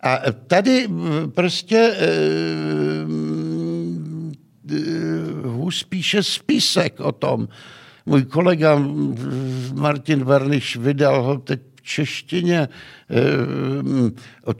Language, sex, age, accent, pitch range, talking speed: Czech, male, 60-79, native, 110-170 Hz, 85 wpm